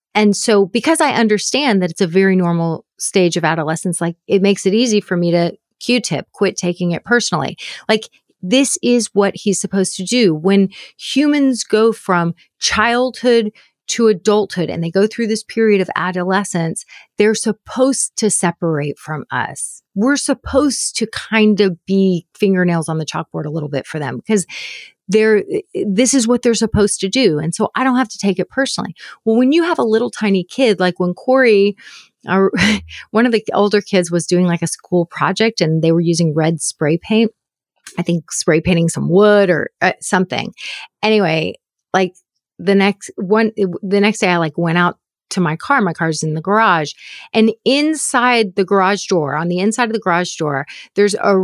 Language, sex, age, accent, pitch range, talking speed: English, female, 30-49, American, 175-225 Hz, 185 wpm